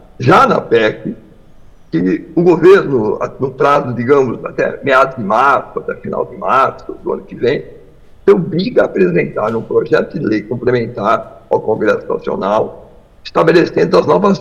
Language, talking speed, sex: English, 150 wpm, male